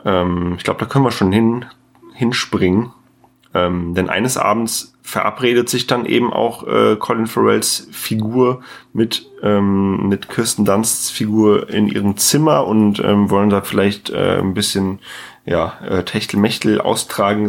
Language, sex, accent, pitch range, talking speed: German, male, German, 95-110 Hz, 145 wpm